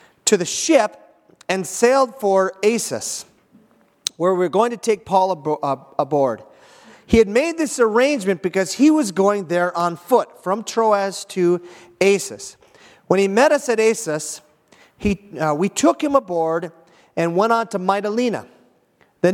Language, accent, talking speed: English, American, 150 wpm